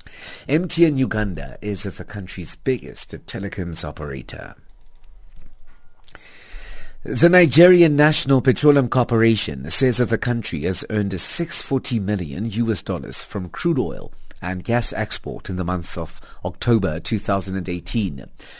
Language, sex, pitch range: English, male, 90-125 Hz